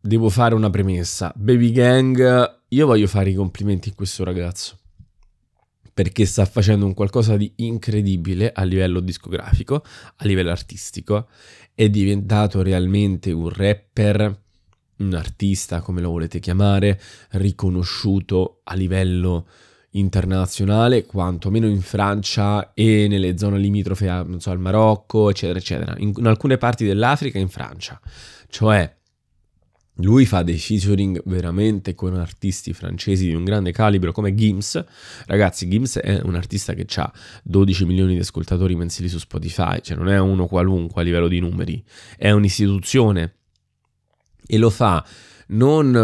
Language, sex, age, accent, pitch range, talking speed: Italian, male, 20-39, native, 90-105 Hz, 140 wpm